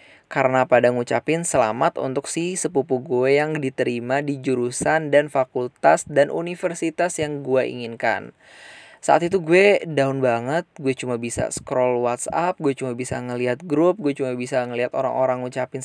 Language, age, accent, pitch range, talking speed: Indonesian, 10-29, native, 125-155 Hz, 150 wpm